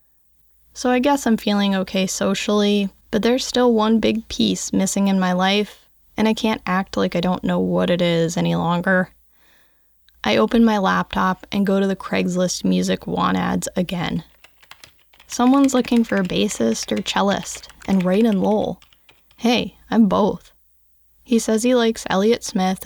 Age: 10-29